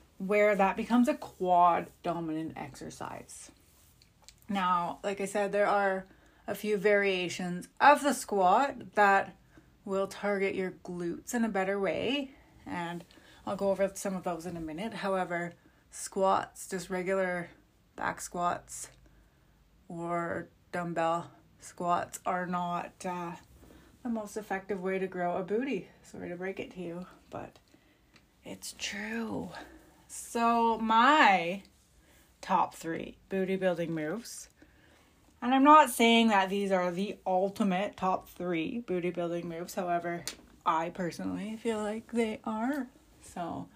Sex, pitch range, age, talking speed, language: female, 175-220 Hz, 30-49, 130 wpm, English